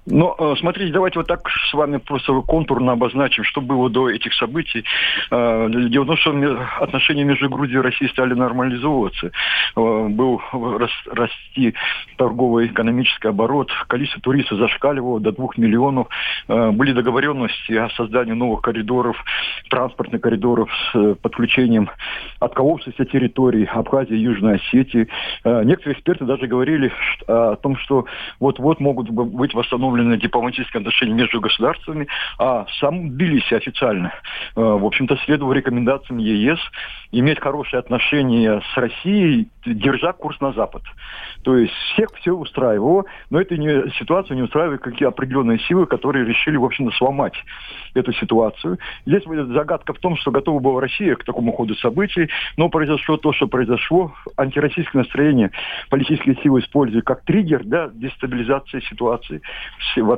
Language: Russian